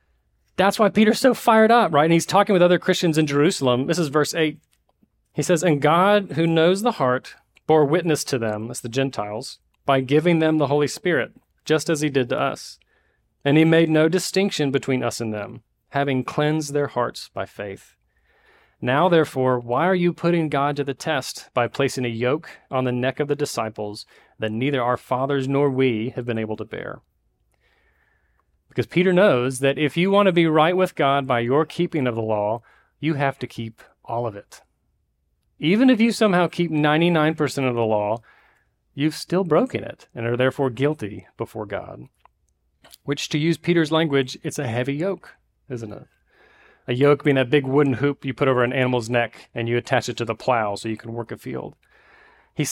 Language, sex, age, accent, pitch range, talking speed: English, male, 40-59, American, 125-160 Hz, 200 wpm